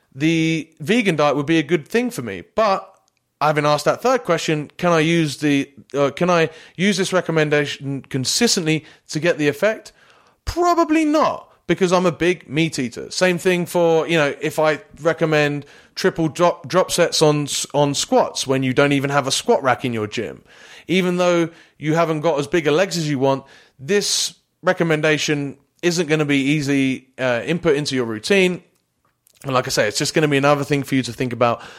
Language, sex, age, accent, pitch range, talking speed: English, male, 30-49, British, 140-180 Hz, 200 wpm